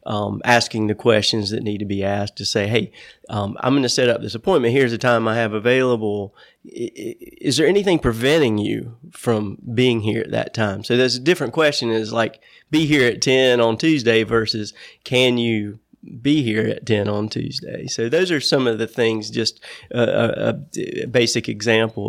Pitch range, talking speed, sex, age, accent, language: 110-125 Hz, 200 wpm, male, 30-49, American, English